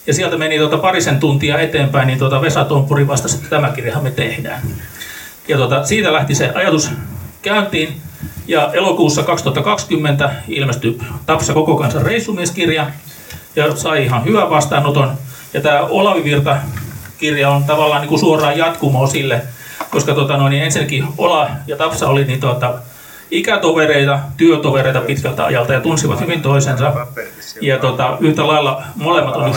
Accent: native